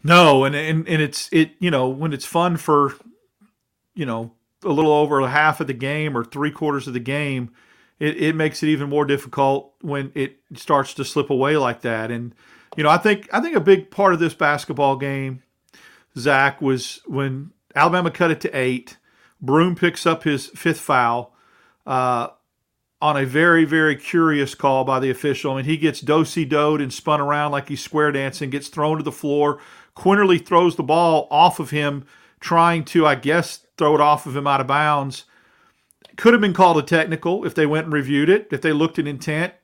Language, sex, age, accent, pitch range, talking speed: English, male, 40-59, American, 140-170 Hz, 205 wpm